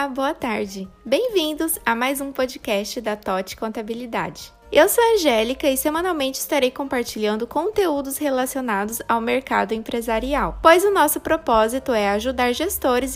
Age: 20-39